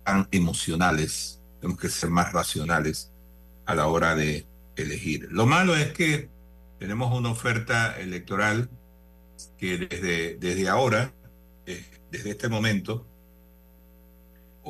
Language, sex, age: Spanish, male, 50-69